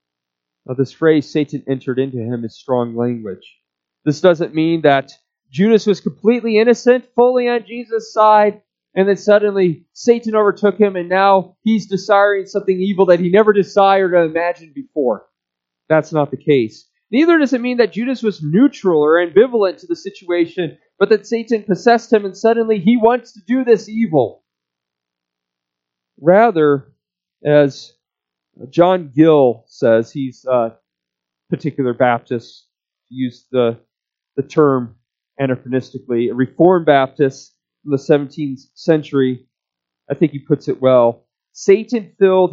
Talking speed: 140 wpm